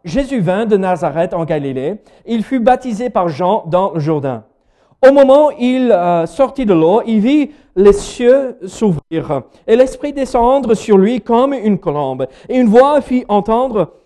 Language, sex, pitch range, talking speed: French, male, 145-240 Hz, 175 wpm